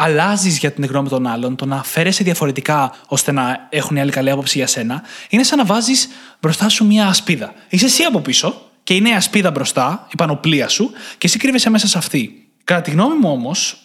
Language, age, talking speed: Greek, 20-39, 210 wpm